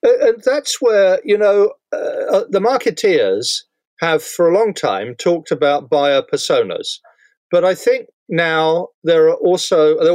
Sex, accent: male, British